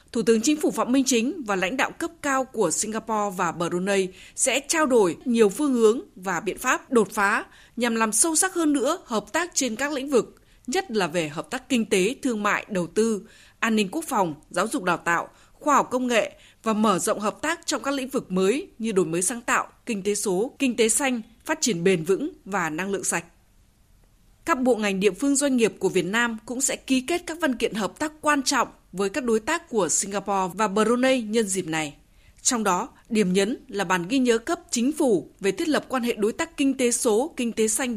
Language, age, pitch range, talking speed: Vietnamese, 20-39, 200-265 Hz, 230 wpm